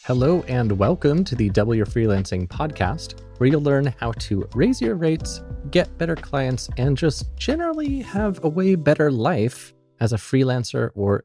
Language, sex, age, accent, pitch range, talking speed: English, male, 30-49, American, 100-130 Hz, 170 wpm